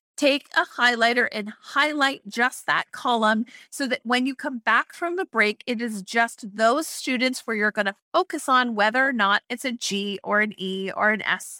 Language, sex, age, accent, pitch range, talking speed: English, female, 30-49, American, 215-275 Hz, 205 wpm